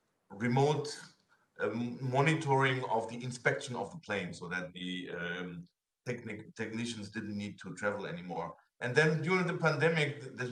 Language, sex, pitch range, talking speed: English, male, 115-140 Hz, 150 wpm